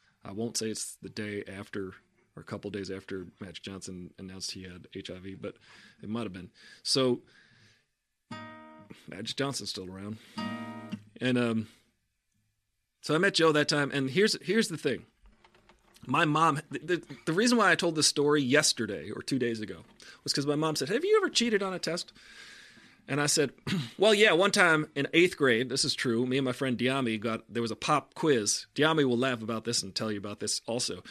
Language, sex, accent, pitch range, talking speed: English, male, American, 110-155 Hz, 195 wpm